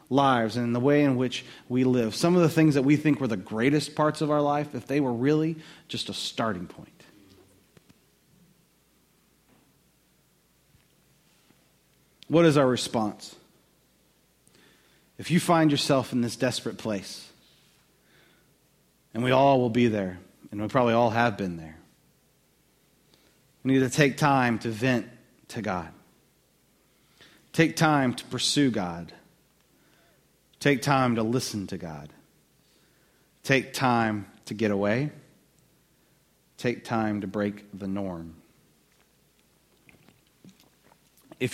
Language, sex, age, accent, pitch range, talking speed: English, male, 30-49, American, 105-140 Hz, 125 wpm